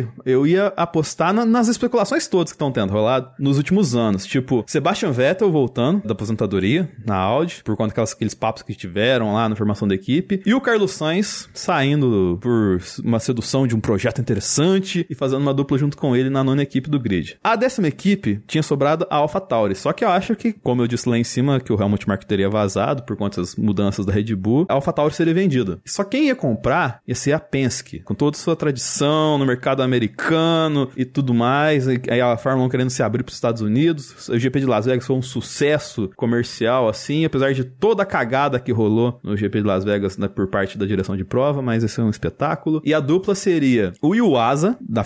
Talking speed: 215 wpm